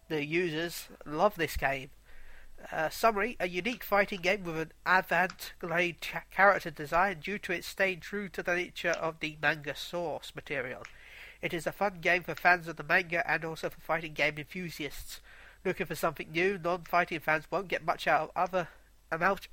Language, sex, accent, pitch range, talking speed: English, male, British, 150-180 Hz, 180 wpm